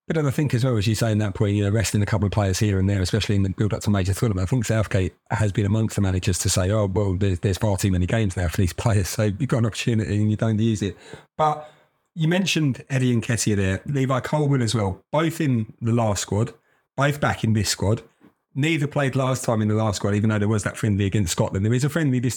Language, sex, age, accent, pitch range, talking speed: English, male, 30-49, British, 105-125 Hz, 275 wpm